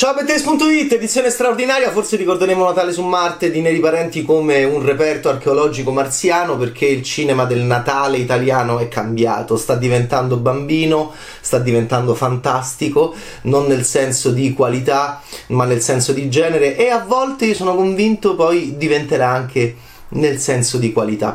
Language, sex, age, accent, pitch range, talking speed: Italian, male, 30-49, native, 120-175 Hz, 150 wpm